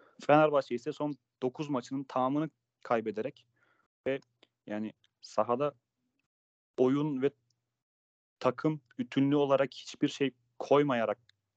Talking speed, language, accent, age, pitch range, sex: 95 wpm, Turkish, native, 30-49, 115-135 Hz, male